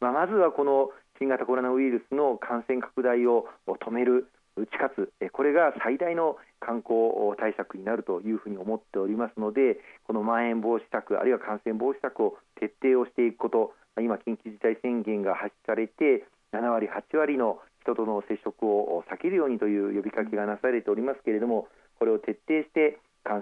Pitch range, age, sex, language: 105-135 Hz, 40-59, male, Japanese